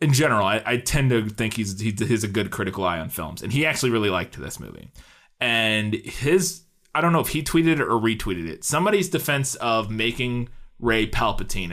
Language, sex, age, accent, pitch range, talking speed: English, male, 20-39, American, 110-130 Hz, 205 wpm